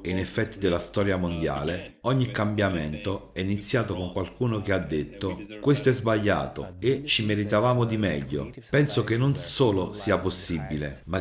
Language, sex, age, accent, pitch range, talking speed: Italian, male, 40-59, native, 90-115 Hz, 160 wpm